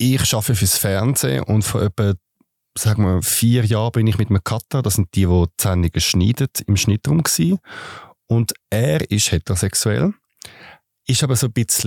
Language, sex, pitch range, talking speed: German, male, 90-115 Hz, 170 wpm